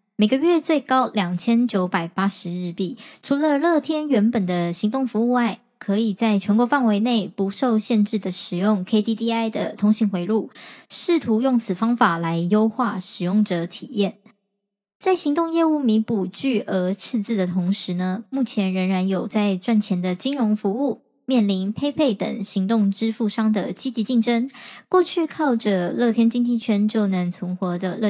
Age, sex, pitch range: 10-29, male, 195-245 Hz